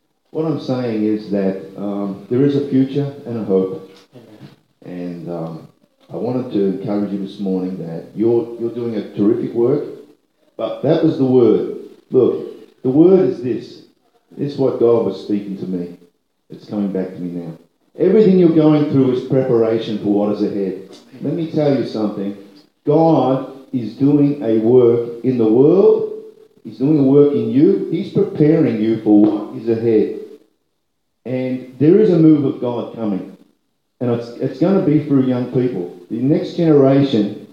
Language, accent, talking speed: English, Australian, 175 wpm